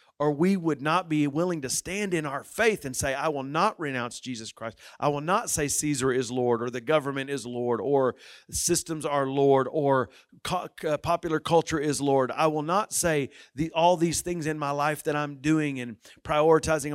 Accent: American